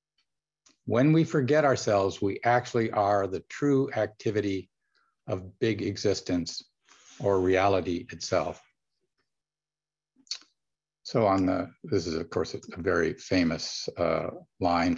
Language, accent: English, American